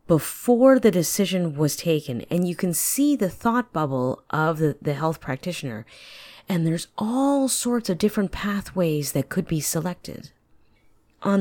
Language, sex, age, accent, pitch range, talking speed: English, female, 30-49, American, 165-230 Hz, 155 wpm